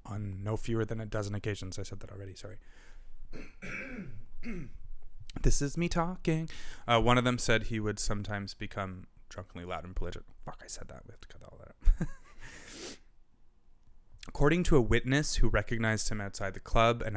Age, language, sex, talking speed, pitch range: 20-39, English, male, 180 wpm, 95-110 Hz